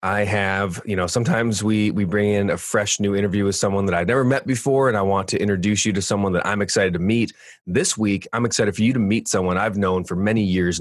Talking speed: 260 wpm